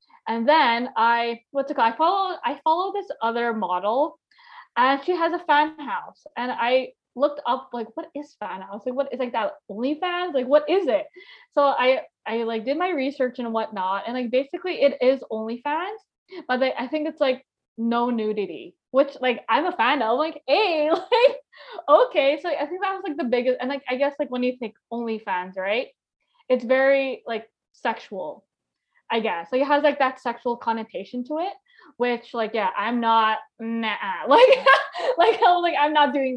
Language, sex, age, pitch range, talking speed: English, female, 20-39, 235-305 Hz, 200 wpm